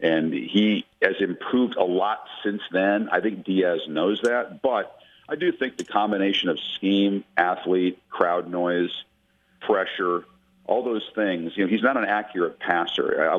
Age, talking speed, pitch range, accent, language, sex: 50-69, 160 wpm, 90-115 Hz, American, English, male